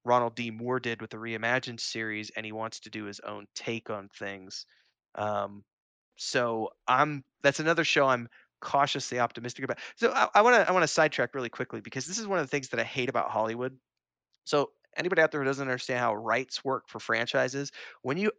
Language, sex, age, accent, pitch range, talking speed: English, male, 30-49, American, 110-145 Hz, 210 wpm